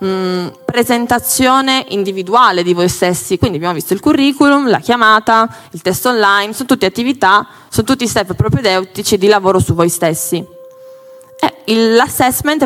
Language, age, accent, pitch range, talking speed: Italian, 20-39, native, 180-260 Hz, 135 wpm